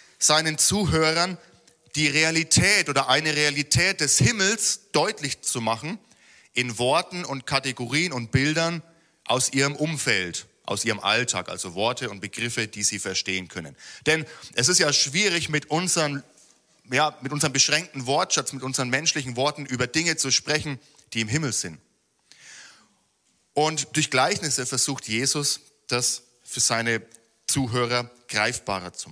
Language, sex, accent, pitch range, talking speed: German, male, German, 115-150 Hz, 140 wpm